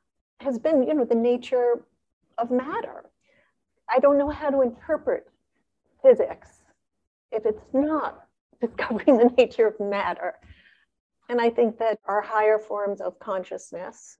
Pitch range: 195-265 Hz